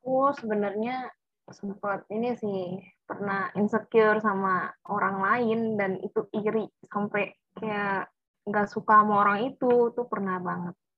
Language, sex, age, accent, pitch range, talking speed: Indonesian, female, 20-39, native, 195-230 Hz, 125 wpm